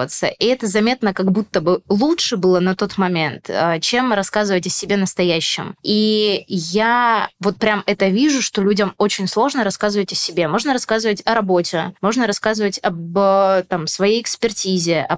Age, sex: 20-39, female